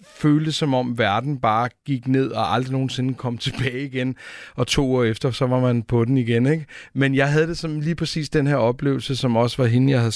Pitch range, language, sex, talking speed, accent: 110-130 Hz, Danish, male, 235 wpm, native